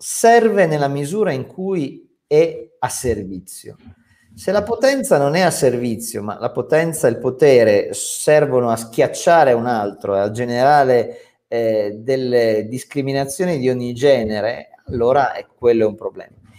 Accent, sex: native, male